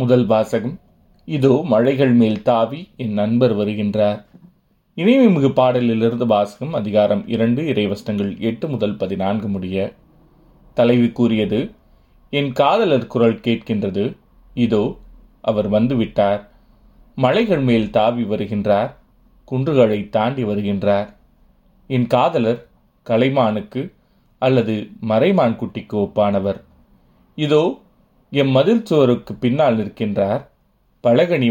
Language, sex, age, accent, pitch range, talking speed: Tamil, male, 30-49, native, 105-125 Hz, 90 wpm